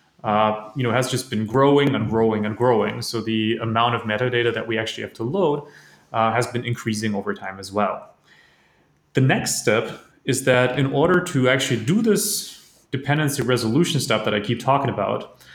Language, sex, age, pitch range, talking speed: English, male, 30-49, 115-145 Hz, 190 wpm